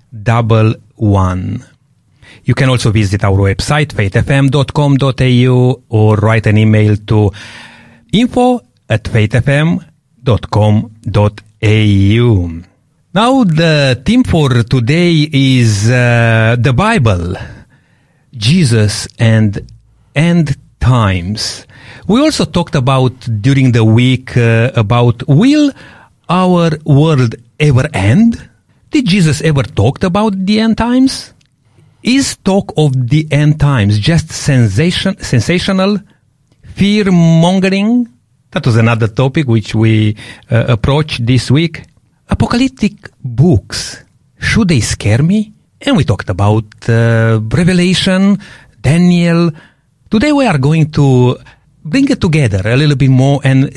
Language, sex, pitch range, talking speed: English, male, 115-165 Hz, 110 wpm